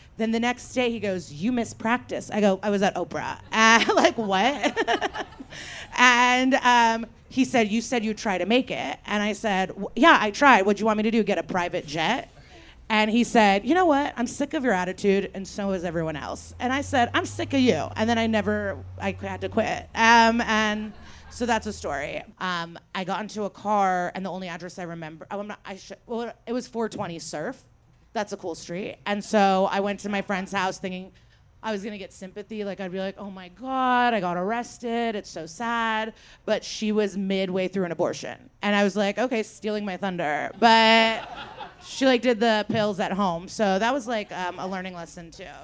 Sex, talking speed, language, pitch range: female, 220 wpm, English, 190-235 Hz